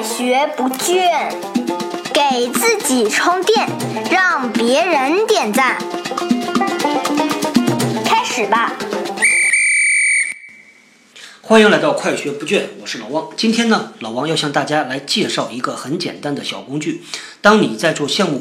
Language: Chinese